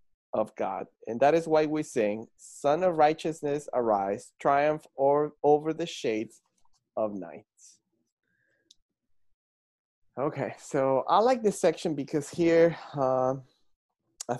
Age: 20-39